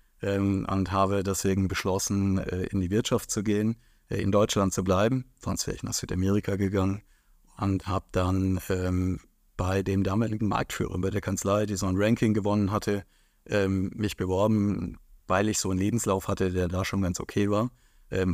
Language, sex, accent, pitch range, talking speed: German, male, German, 95-110 Hz, 180 wpm